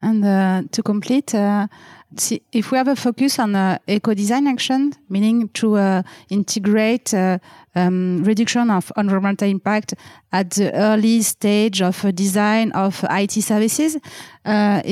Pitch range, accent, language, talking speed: 195-225 Hz, French, English, 135 wpm